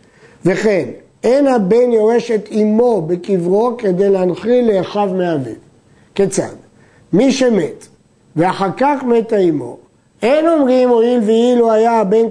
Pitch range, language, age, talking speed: 190-240 Hz, Hebrew, 50-69, 120 wpm